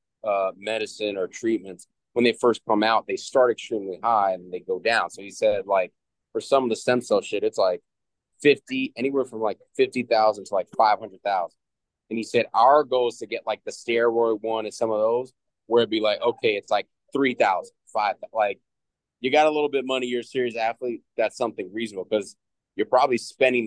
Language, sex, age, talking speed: English, male, 20-39, 220 wpm